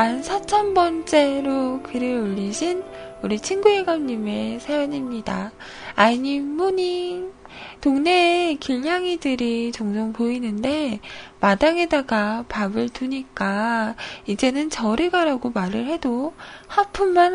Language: Korean